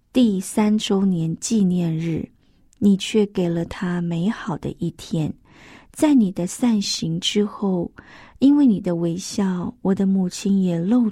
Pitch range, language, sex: 185-230 Hz, Chinese, female